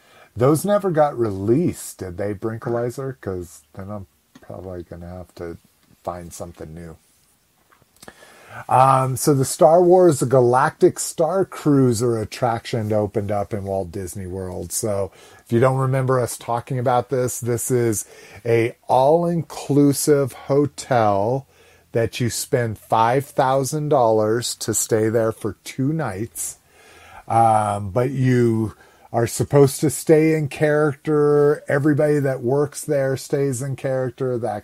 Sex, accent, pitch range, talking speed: male, American, 105-140 Hz, 130 wpm